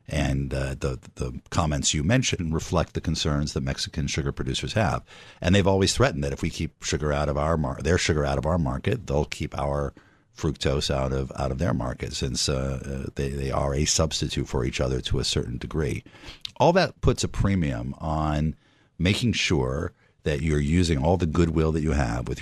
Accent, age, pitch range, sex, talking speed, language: American, 50-69, 70-85 Hz, male, 205 wpm, English